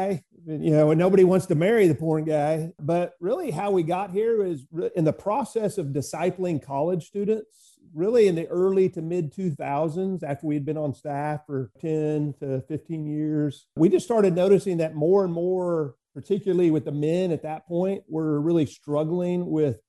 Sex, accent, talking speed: male, American, 180 wpm